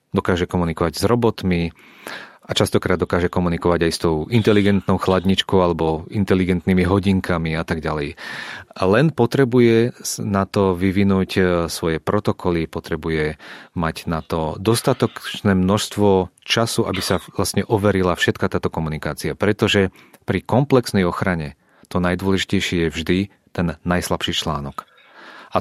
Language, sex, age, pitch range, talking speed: Czech, male, 30-49, 85-100 Hz, 120 wpm